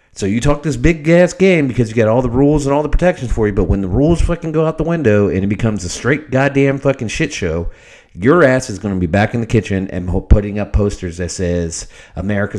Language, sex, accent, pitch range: English, male, American, 95-125 Hz